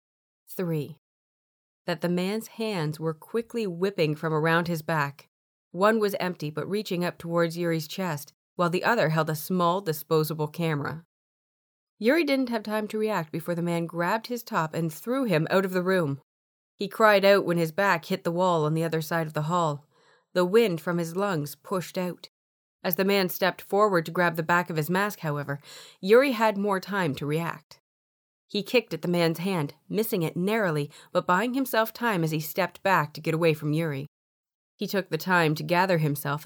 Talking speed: 195 wpm